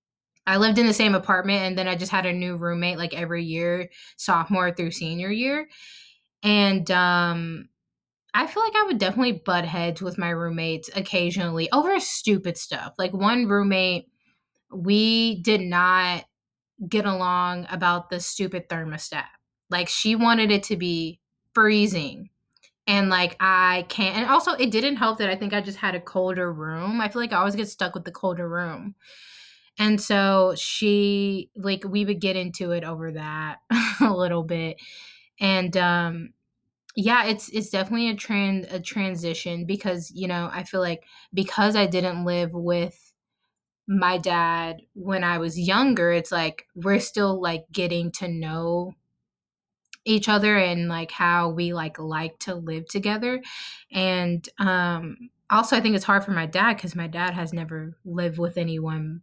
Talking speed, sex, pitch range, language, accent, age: 165 wpm, female, 170-205 Hz, English, American, 20-39